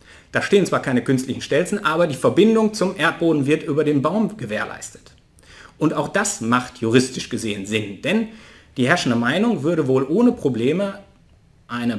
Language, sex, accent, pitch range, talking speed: German, male, German, 115-155 Hz, 160 wpm